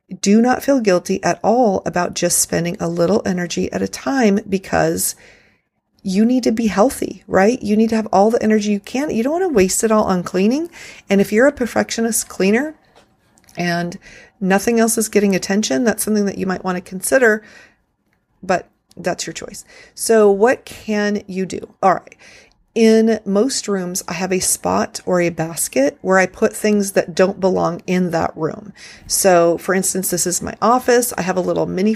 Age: 40-59